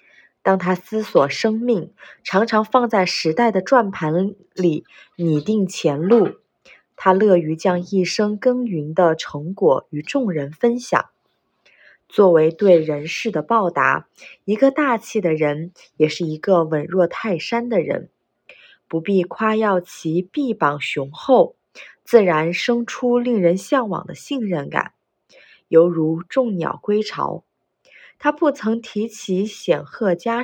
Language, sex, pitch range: Chinese, female, 170-230 Hz